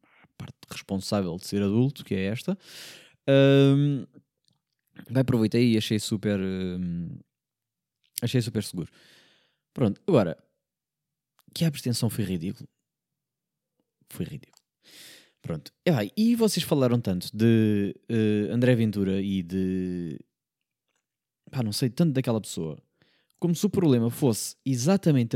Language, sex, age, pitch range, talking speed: Portuguese, male, 20-39, 100-140 Hz, 125 wpm